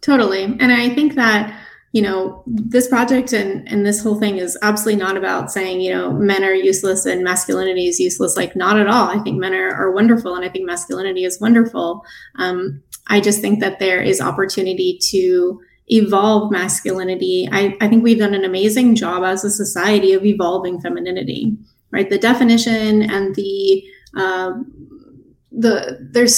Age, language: 20-39, English